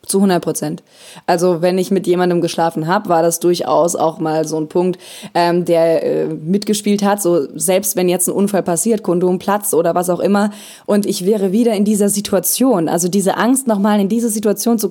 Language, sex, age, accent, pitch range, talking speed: German, female, 20-39, German, 180-220 Hz, 205 wpm